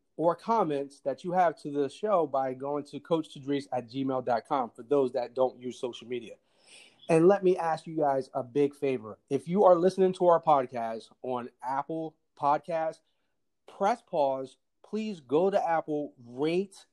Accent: American